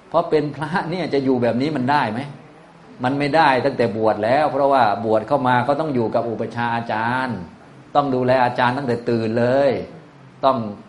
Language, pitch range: Thai, 110-145 Hz